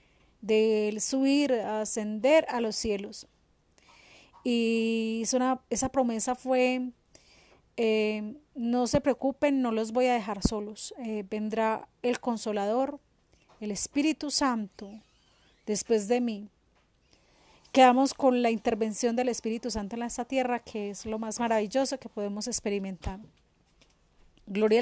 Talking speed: 125 wpm